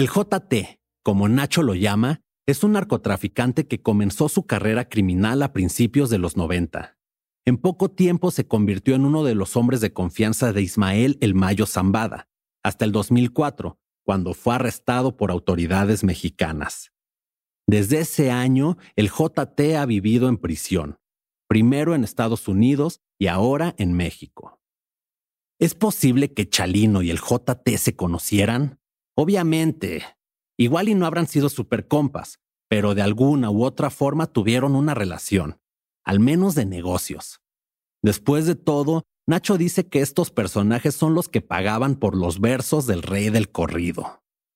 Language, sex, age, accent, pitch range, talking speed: Spanish, male, 40-59, Mexican, 100-145 Hz, 150 wpm